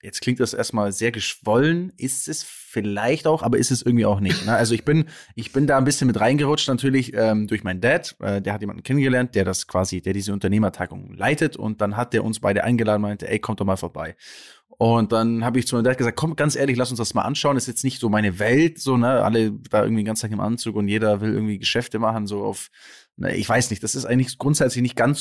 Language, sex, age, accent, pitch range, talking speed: German, male, 20-39, German, 110-135 Hz, 255 wpm